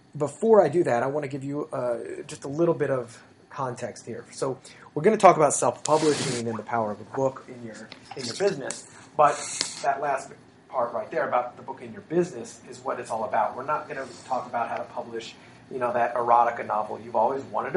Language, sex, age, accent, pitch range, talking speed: English, male, 30-49, American, 115-140 Hz, 235 wpm